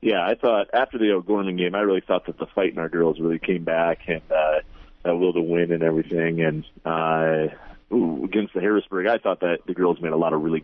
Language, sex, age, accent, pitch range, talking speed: English, male, 30-49, American, 80-90 Hz, 245 wpm